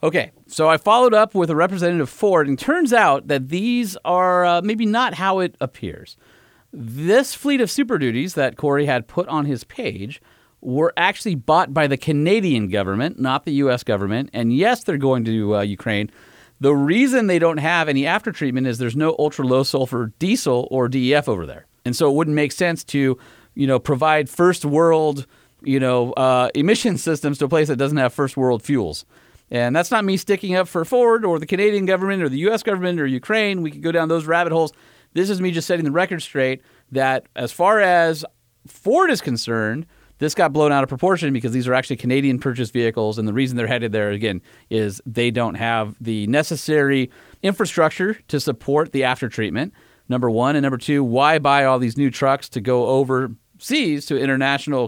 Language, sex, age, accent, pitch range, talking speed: English, male, 40-59, American, 125-170 Hz, 195 wpm